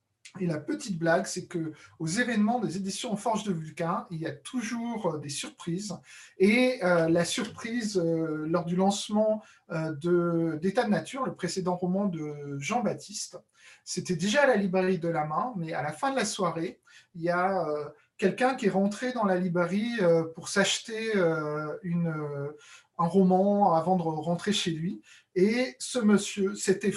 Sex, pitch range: male, 165-210 Hz